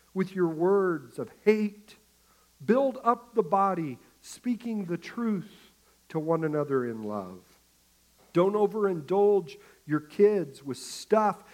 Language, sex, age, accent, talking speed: English, male, 50-69, American, 120 wpm